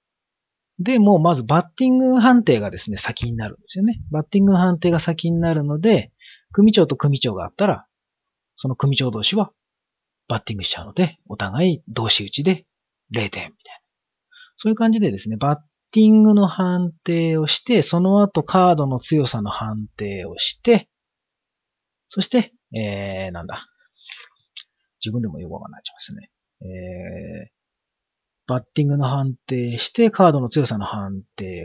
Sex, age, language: male, 40-59, Japanese